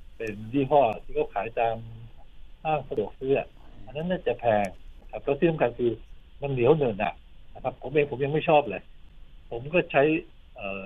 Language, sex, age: Thai, male, 60-79